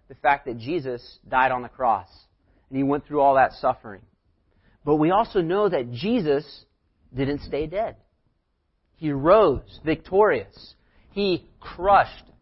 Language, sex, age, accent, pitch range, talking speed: English, male, 40-59, American, 110-165 Hz, 140 wpm